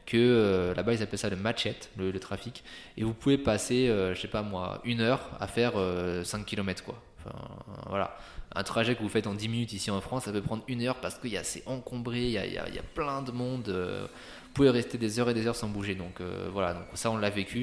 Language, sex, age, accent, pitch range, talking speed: French, male, 20-39, French, 95-115 Hz, 270 wpm